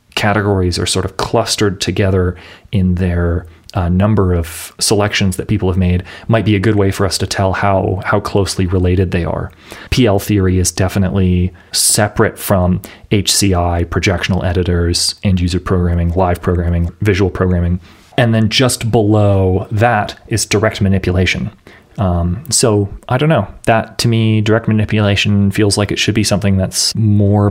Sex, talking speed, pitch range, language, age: male, 160 wpm, 95-110 Hz, English, 30-49